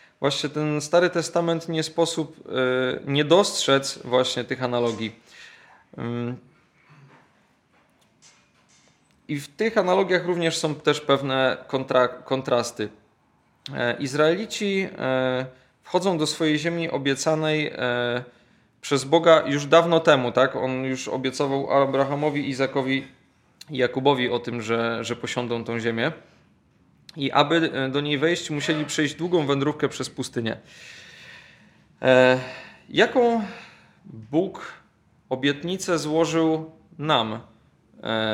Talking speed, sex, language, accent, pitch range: 100 wpm, male, Polish, native, 120-155 Hz